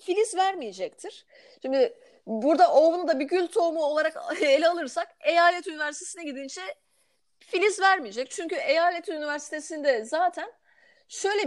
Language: Turkish